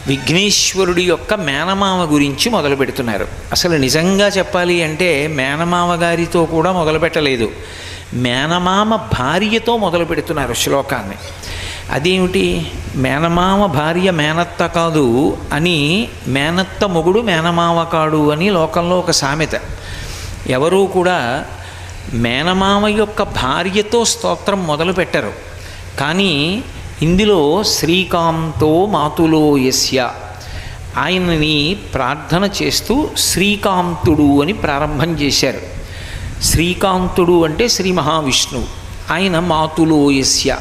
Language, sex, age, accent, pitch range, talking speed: Telugu, male, 50-69, native, 130-185 Hz, 85 wpm